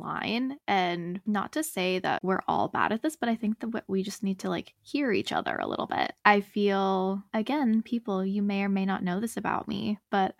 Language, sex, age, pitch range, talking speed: English, female, 10-29, 185-230 Hz, 230 wpm